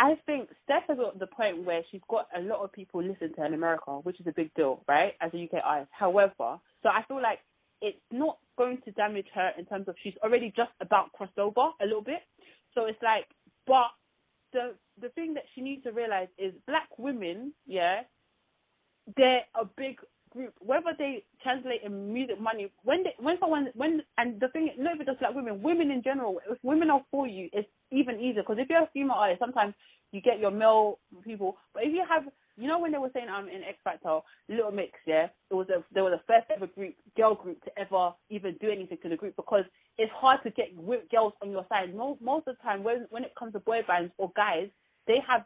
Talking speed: 235 wpm